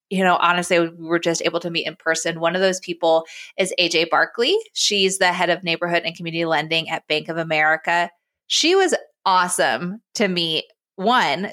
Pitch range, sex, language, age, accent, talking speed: 165-195 Hz, female, English, 20-39, American, 185 wpm